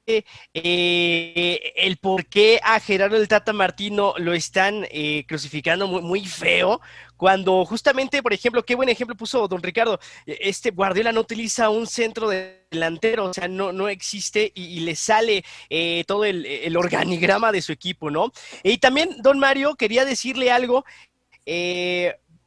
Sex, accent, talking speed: male, Mexican, 160 wpm